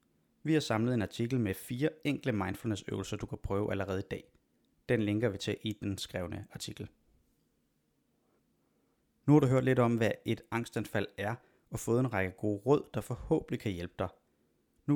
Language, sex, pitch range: Danish, male, 105-130 Hz